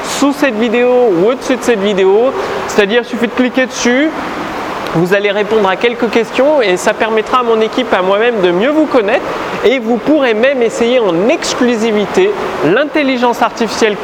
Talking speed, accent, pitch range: 190 wpm, French, 195-250 Hz